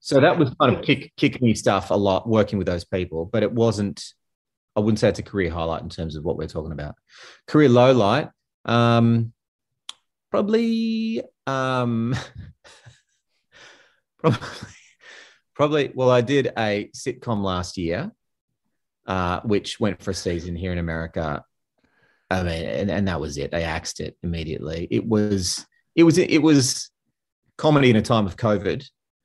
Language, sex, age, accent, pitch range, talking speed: English, male, 30-49, Australian, 90-120 Hz, 160 wpm